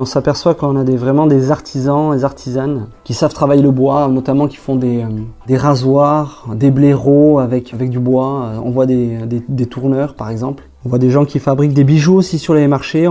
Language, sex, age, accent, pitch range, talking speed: French, male, 20-39, French, 130-150 Hz, 215 wpm